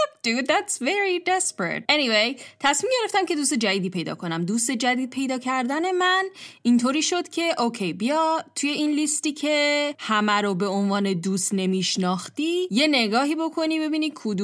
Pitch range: 190-290 Hz